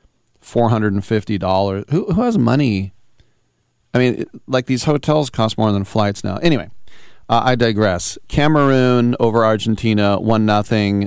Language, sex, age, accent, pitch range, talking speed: English, male, 40-59, American, 100-115 Hz, 125 wpm